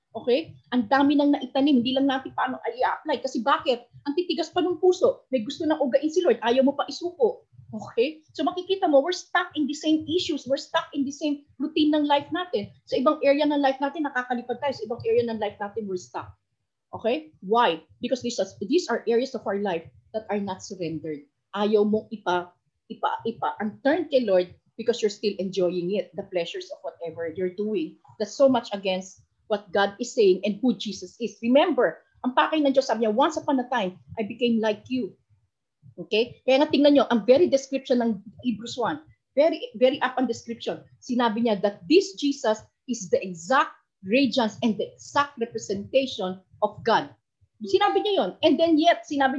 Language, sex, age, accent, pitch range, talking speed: Filipino, female, 30-49, native, 210-290 Hz, 190 wpm